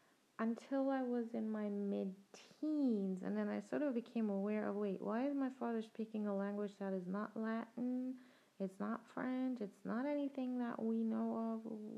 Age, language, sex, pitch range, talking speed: 20-39, English, female, 195-255 Hz, 180 wpm